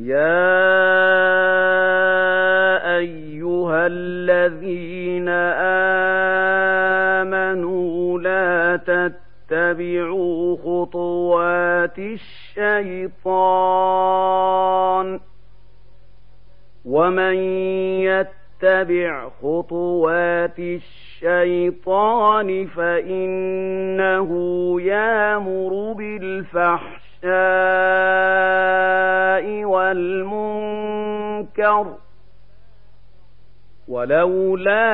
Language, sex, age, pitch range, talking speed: Arabic, male, 40-59, 175-205 Hz, 35 wpm